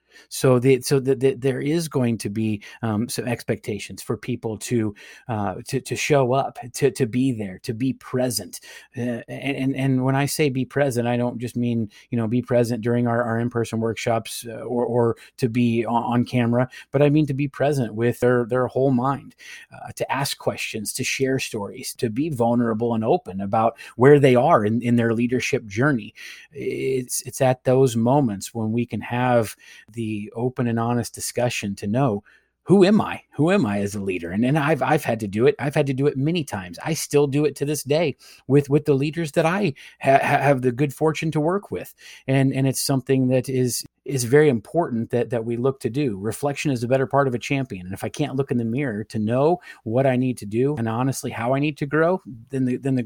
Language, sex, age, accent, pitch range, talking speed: English, male, 30-49, American, 115-140 Hz, 225 wpm